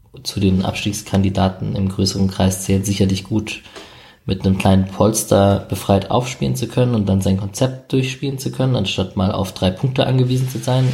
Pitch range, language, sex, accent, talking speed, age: 95-110 Hz, German, male, German, 175 wpm, 20-39